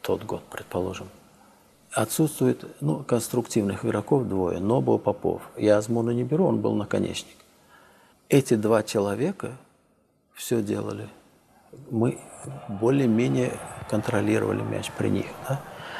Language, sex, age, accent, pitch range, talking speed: Russian, male, 50-69, native, 105-125 Hz, 110 wpm